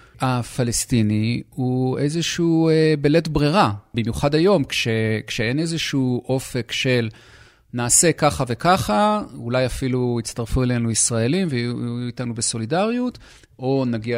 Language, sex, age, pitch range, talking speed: Hebrew, male, 40-59, 115-155 Hz, 105 wpm